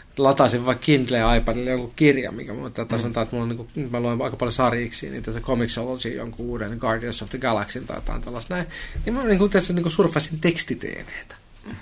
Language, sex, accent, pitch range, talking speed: Finnish, male, native, 115-145 Hz, 190 wpm